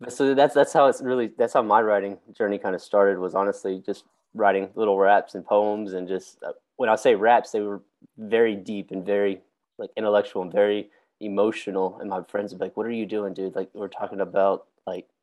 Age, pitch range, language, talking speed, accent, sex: 20-39, 95-105 Hz, English, 215 wpm, American, male